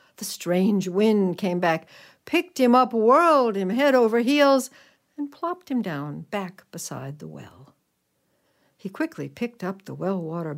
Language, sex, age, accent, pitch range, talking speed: English, female, 60-79, American, 175-250 Hz, 155 wpm